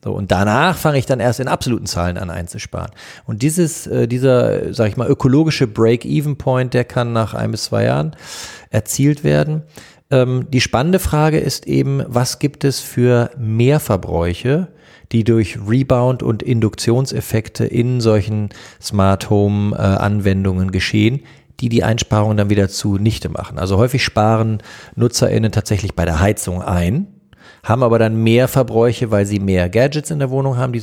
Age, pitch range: 40-59, 100-125 Hz